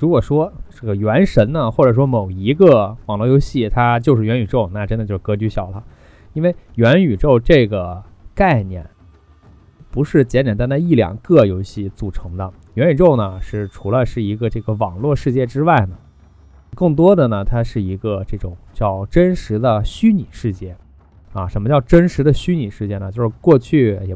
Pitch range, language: 100-130 Hz, Chinese